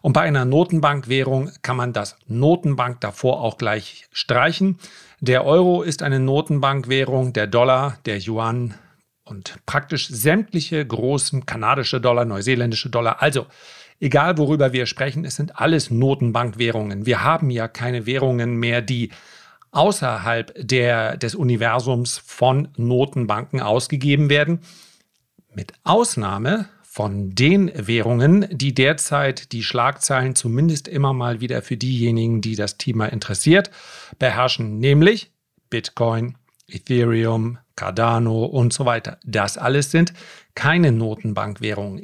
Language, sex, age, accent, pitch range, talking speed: German, male, 50-69, German, 115-150 Hz, 120 wpm